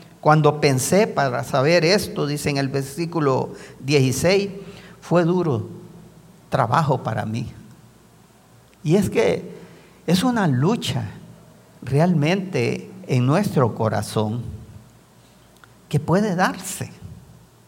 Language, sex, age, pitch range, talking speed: English, male, 50-69, 130-180 Hz, 95 wpm